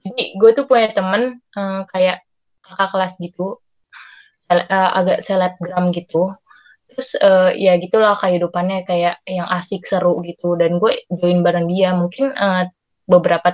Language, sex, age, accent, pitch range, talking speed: Indonesian, female, 20-39, native, 180-215 Hz, 150 wpm